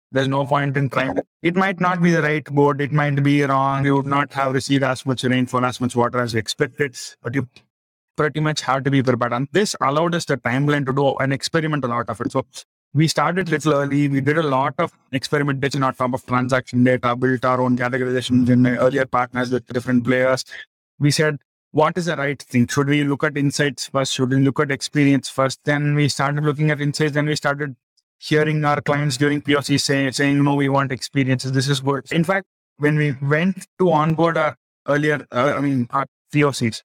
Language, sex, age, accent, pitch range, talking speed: English, male, 30-49, Indian, 130-155 Hz, 220 wpm